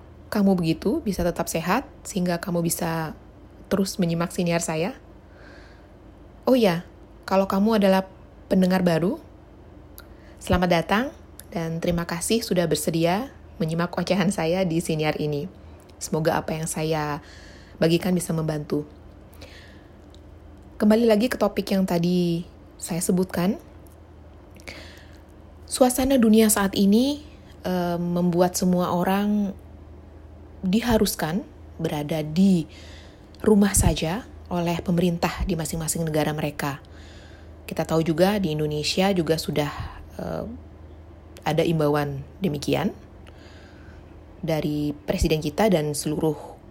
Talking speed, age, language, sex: 105 wpm, 20-39, Indonesian, female